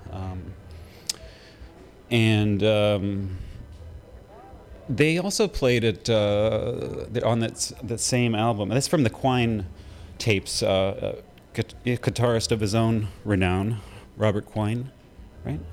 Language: English